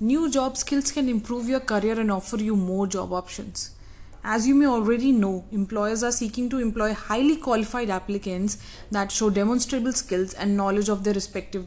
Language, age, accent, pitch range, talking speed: English, 30-49, Indian, 190-230 Hz, 180 wpm